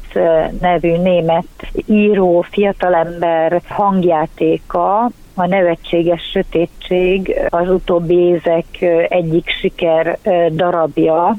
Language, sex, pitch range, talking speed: Hungarian, female, 165-190 Hz, 75 wpm